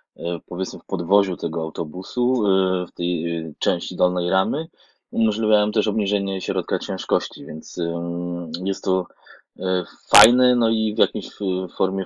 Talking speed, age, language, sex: 120 wpm, 20-39, Polish, male